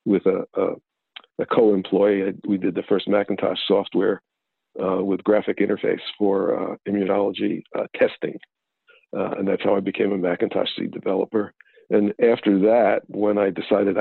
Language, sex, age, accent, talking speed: English, male, 50-69, American, 155 wpm